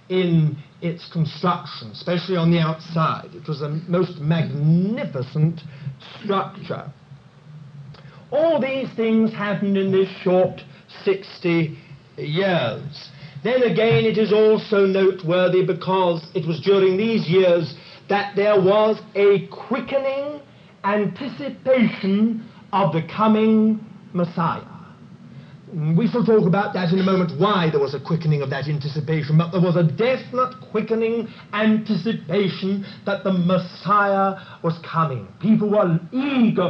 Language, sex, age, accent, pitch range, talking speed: English, male, 50-69, British, 155-205 Hz, 125 wpm